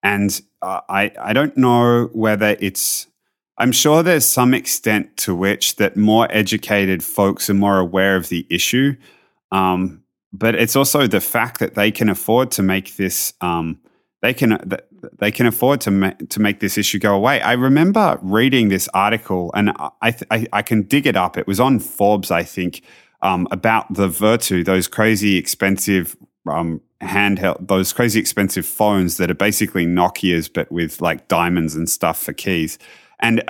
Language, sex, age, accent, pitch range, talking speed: English, male, 30-49, Australian, 95-115 Hz, 175 wpm